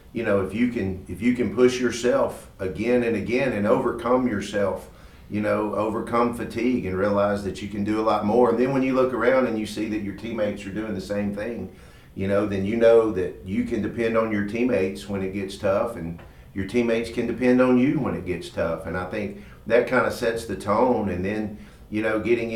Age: 50-69